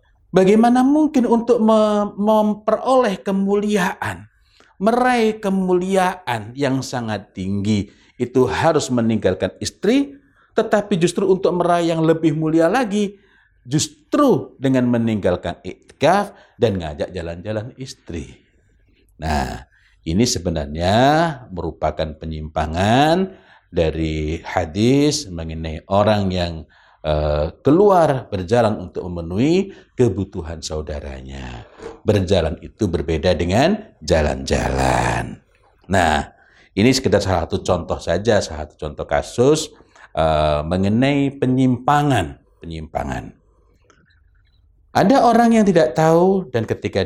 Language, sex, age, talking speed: Indonesian, male, 50-69, 95 wpm